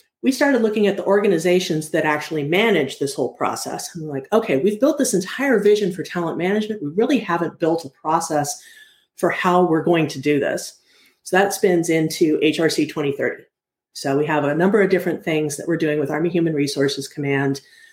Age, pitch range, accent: 40-59, 140-175 Hz, American